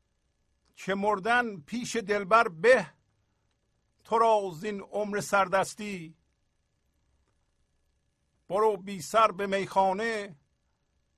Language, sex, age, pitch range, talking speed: Persian, male, 50-69, 150-225 Hz, 70 wpm